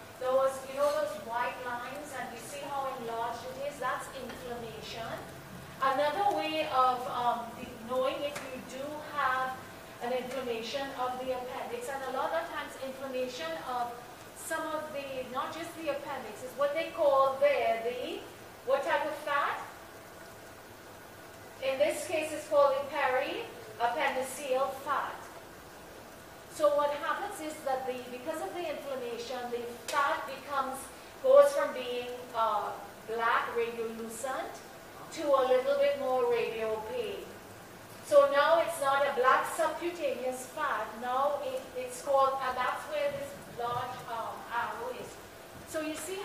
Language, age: English, 40-59